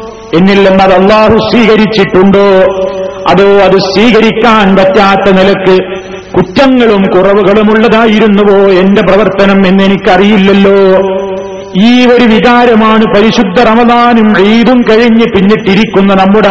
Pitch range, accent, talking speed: 195-220 Hz, native, 75 wpm